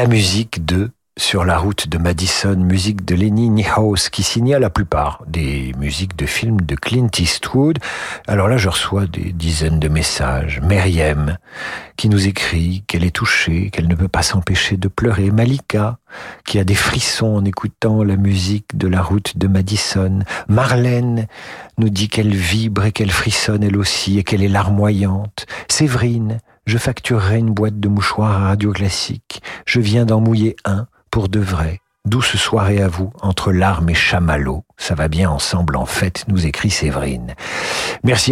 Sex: male